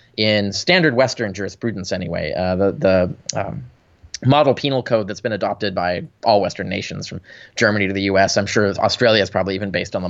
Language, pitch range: English, 100-140 Hz